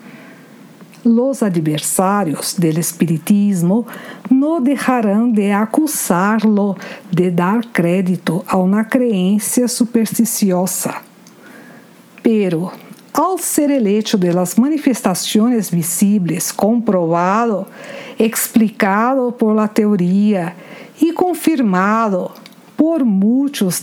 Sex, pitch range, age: female, 195-265 Hz, 50-69